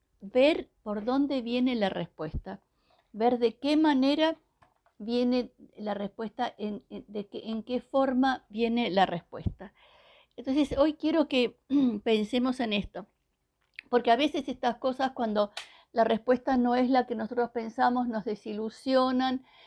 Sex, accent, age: female, American, 60-79